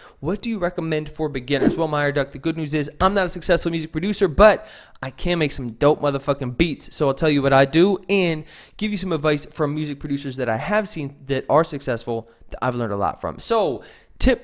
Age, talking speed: 20-39, 235 wpm